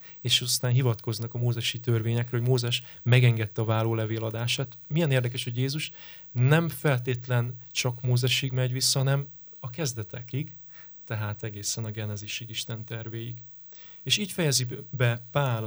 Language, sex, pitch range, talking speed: Hungarian, male, 115-135 Hz, 140 wpm